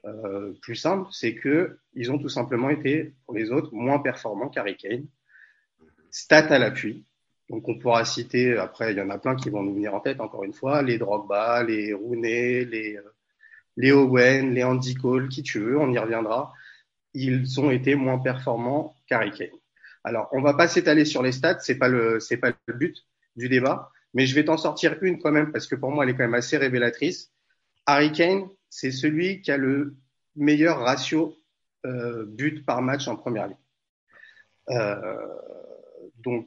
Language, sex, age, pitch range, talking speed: French, male, 30-49, 120-150 Hz, 190 wpm